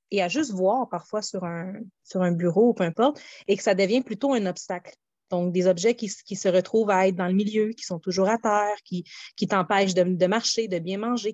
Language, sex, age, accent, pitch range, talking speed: French, female, 30-49, Canadian, 185-230 Hz, 245 wpm